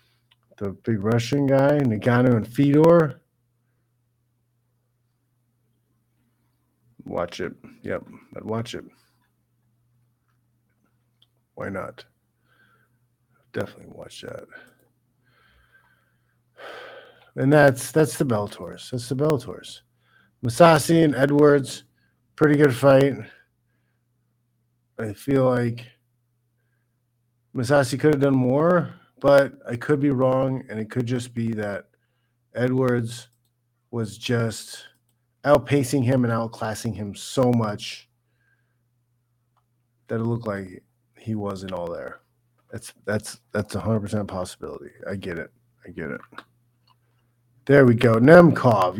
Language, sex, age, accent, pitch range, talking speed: English, male, 50-69, American, 120-135 Hz, 105 wpm